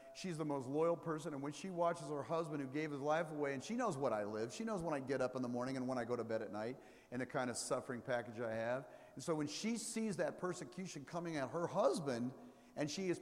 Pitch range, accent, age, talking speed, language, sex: 135-180 Hz, American, 50-69, 275 wpm, English, male